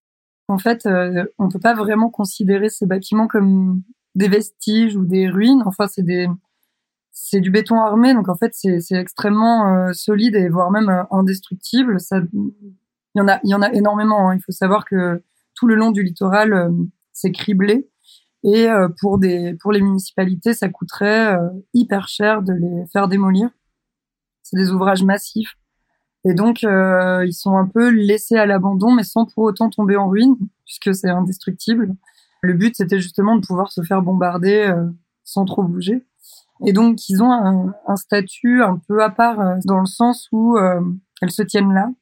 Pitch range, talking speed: 185-215 Hz, 185 wpm